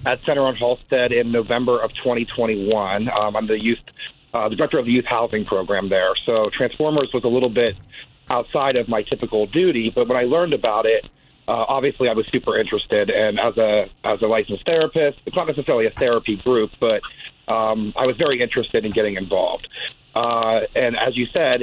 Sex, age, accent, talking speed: male, 40-59, American, 195 wpm